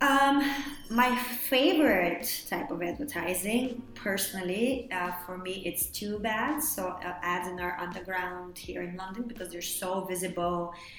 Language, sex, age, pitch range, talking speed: English, female, 20-39, 170-190 Hz, 140 wpm